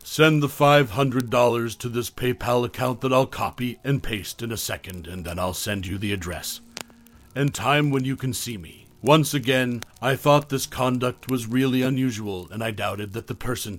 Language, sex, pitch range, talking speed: English, male, 105-130 Hz, 190 wpm